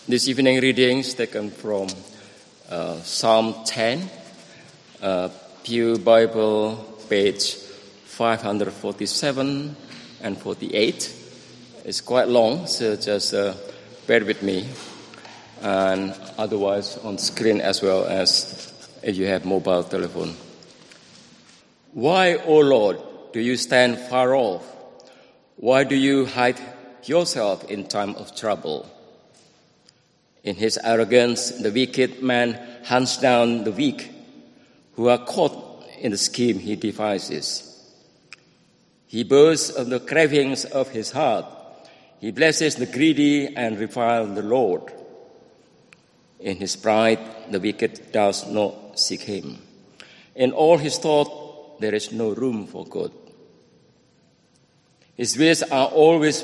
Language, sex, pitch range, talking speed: English, male, 105-135 Hz, 120 wpm